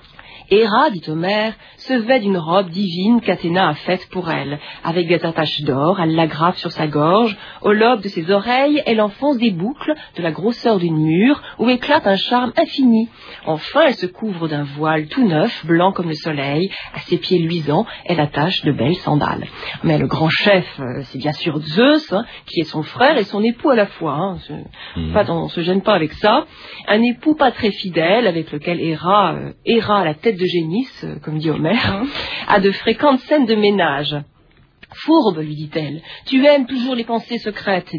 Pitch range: 165-230 Hz